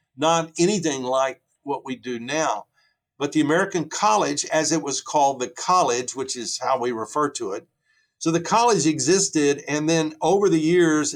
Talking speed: 175 wpm